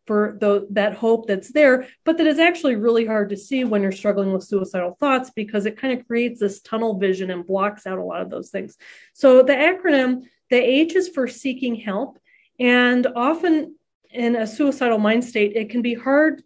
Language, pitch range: English, 205-255 Hz